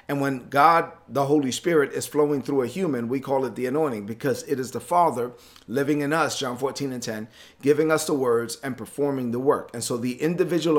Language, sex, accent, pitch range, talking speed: English, male, American, 125-155 Hz, 220 wpm